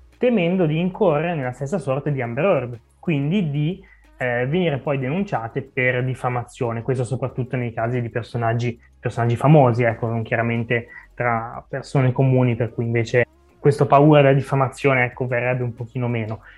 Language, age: Italian, 20-39